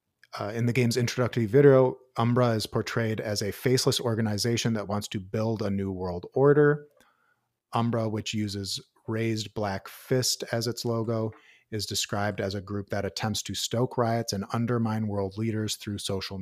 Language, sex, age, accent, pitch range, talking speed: English, male, 30-49, American, 100-115 Hz, 170 wpm